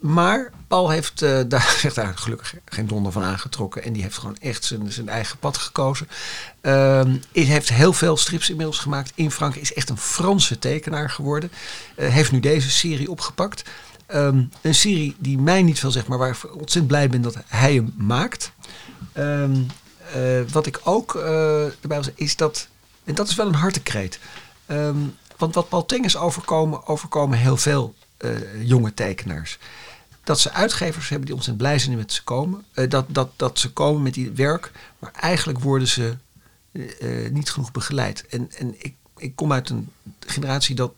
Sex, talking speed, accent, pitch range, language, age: male, 185 wpm, Dutch, 120-150 Hz, Dutch, 50-69